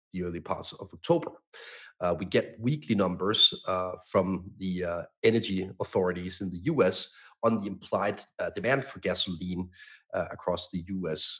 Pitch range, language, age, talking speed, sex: 90-105 Hz, English, 40-59, 155 wpm, male